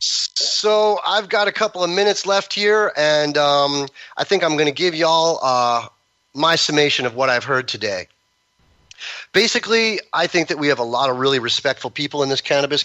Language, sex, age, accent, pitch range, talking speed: English, male, 30-49, American, 130-165 Hz, 195 wpm